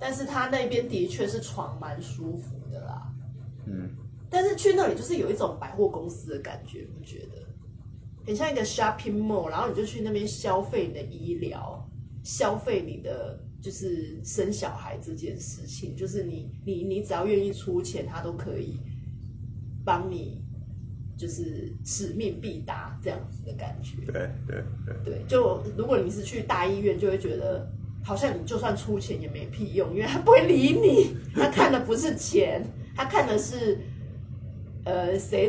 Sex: female